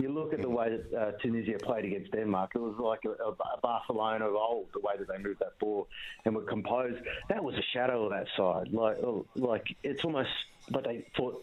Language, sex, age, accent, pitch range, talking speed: English, male, 30-49, Australian, 110-145 Hz, 220 wpm